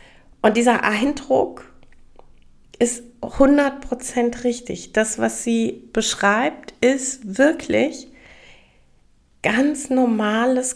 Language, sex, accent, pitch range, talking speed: German, female, German, 205-255 Hz, 80 wpm